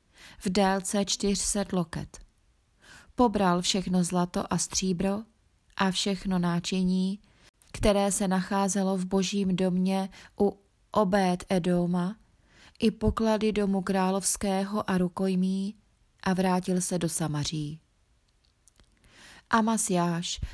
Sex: female